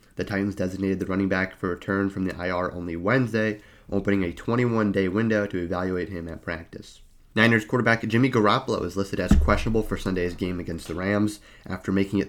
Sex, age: male, 30-49